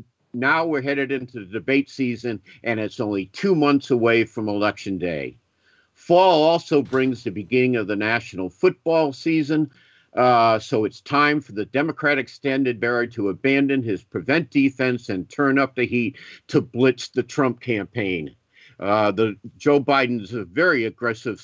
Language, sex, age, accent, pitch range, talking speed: English, male, 50-69, American, 115-145 Hz, 155 wpm